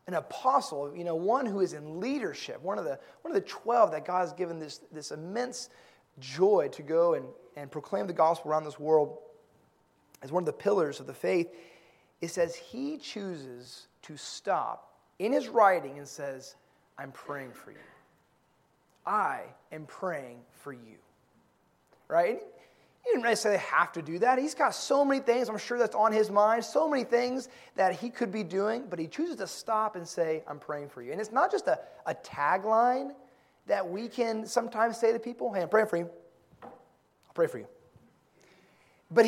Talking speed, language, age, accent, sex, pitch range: 195 wpm, English, 30-49, American, male, 160-250 Hz